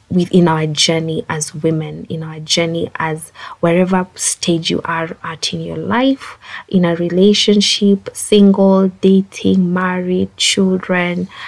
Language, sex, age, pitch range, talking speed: English, female, 20-39, 165-215 Hz, 125 wpm